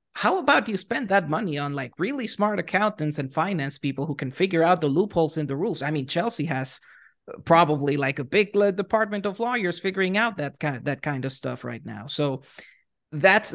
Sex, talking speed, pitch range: male, 210 wpm, 140-180 Hz